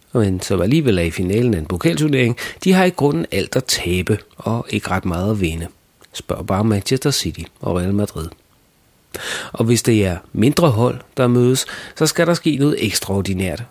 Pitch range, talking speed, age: 90-120 Hz, 190 wpm, 40-59